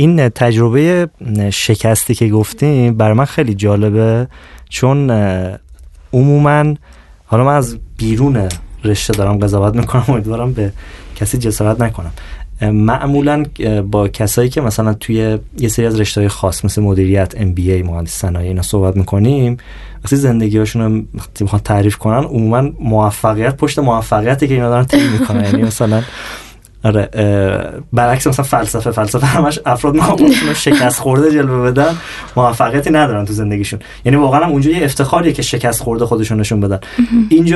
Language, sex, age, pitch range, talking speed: Persian, male, 20-39, 105-140 Hz, 140 wpm